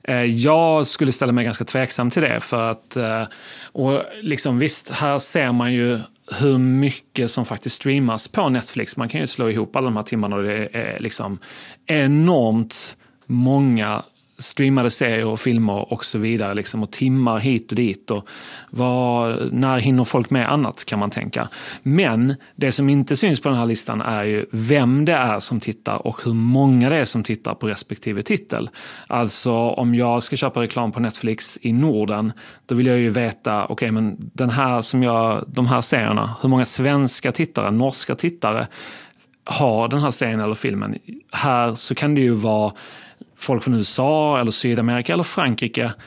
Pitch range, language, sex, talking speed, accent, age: 115-135 Hz, Swedish, male, 180 wpm, native, 30-49